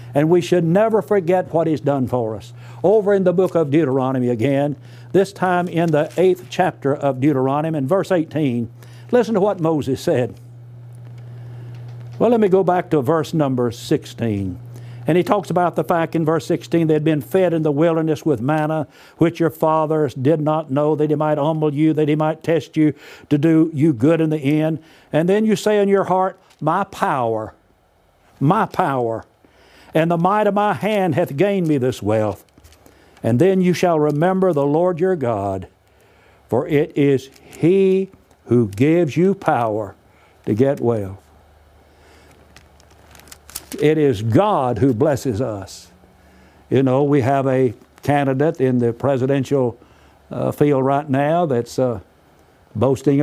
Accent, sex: American, male